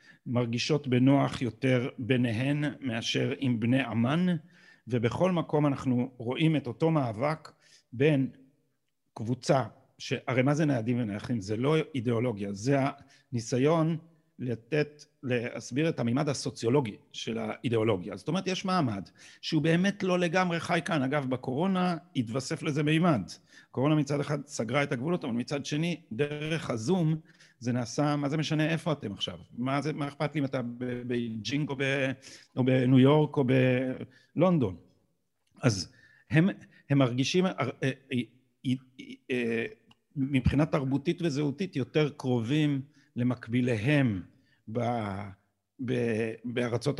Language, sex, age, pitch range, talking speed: Hebrew, male, 50-69, 125-150 Hz, 120 wpm